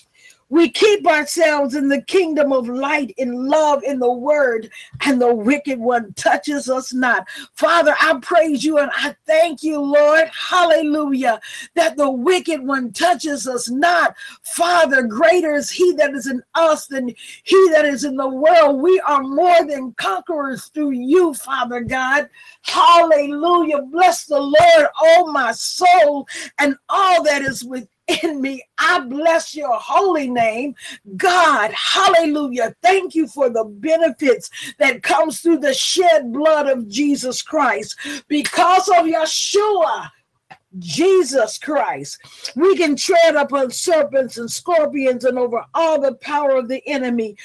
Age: 50-69